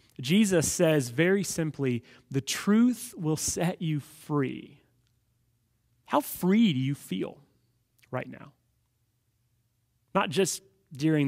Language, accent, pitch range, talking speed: English, American, 125-175 Hz, 105 wpm